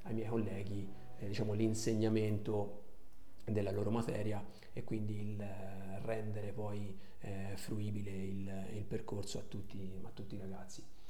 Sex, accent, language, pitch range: male, native, Italian, 100-110 Hz